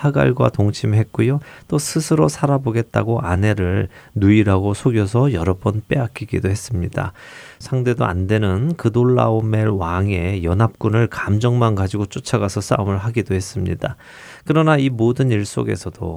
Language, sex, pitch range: Korean, male, 100-130 Hz